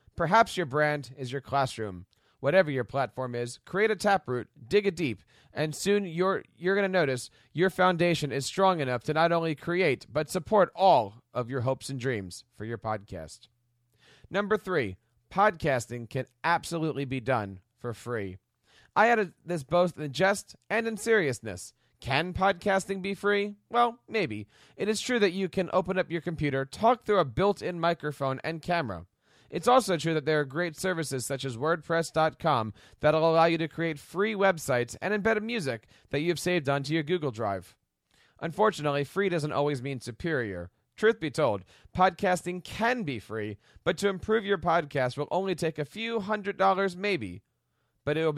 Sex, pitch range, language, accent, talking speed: male, 125-190 Hz, English, American, 175 wpm